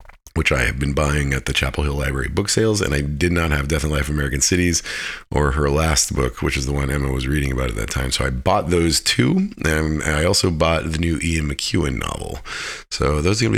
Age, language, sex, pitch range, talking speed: 30-49, English, male, 70-85 Hz, 245 wpm